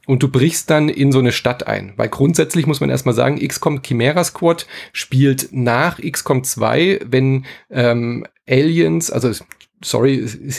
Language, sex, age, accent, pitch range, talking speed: German, male, 30-49, German, 125-160 Hz, 160 wpm